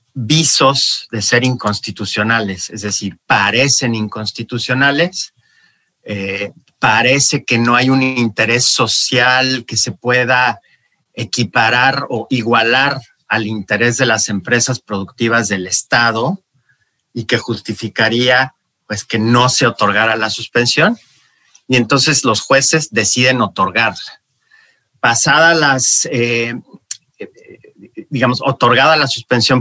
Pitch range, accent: 110-135 Hz, Mexican